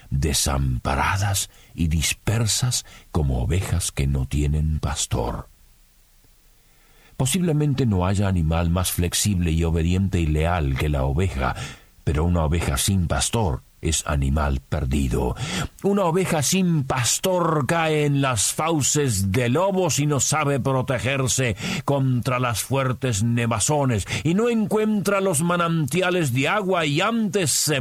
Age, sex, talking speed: 50-69, male, 125 wpm